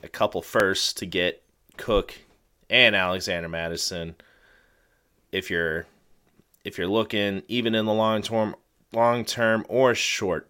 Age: 30-49